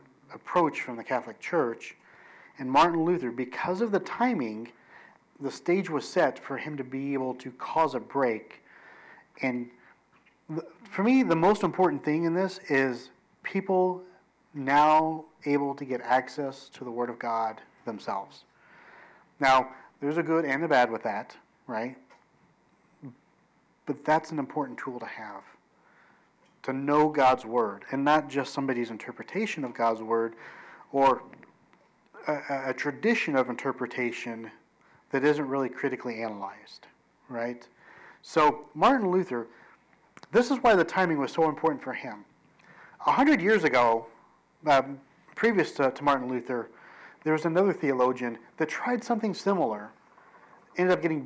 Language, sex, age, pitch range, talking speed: English, male, 40-59, 125-170 Hz, 145 wpm